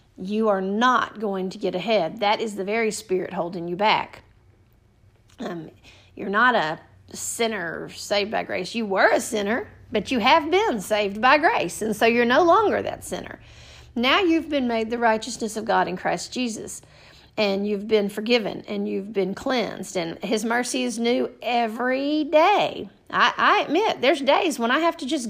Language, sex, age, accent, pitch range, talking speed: English, female, 40-59, American, 215-290 Hz, 185 wpm